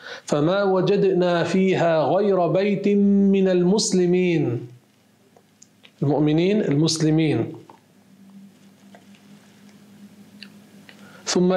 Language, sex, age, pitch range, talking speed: Arabic, male, 40-59, 150-190 Hz, 50 wpm